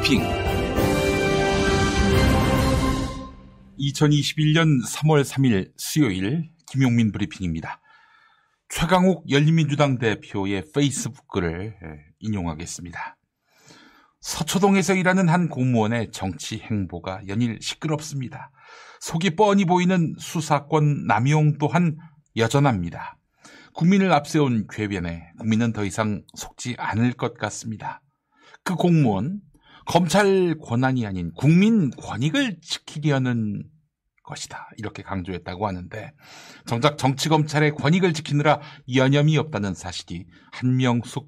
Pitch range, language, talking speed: 105-165 Hz, English, 85 wpm